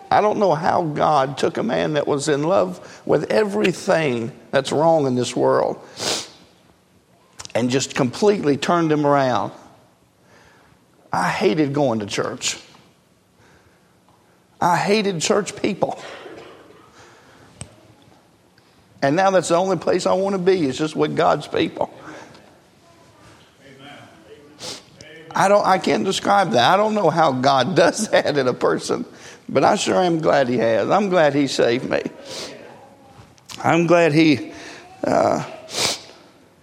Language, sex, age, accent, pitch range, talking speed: English, male, 50-69, American, 140-175 Hz, 135 wpm